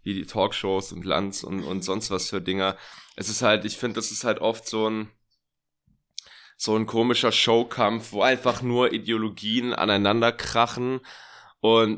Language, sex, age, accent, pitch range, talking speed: German, male, 10-29, German, 100-115 Hz, 165 wpm